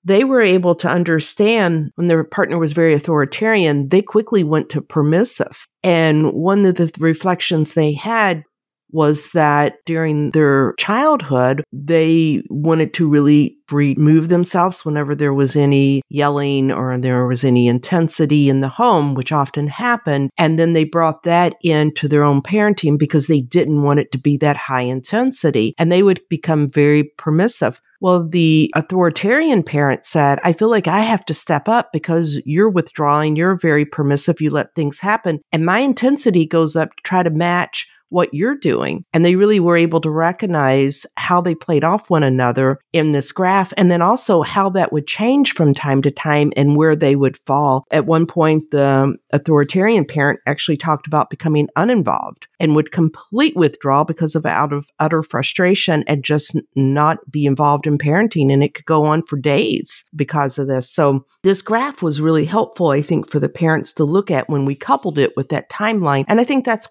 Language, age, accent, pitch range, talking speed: English, 50-69, American, 145-175 Hz, 185 wpm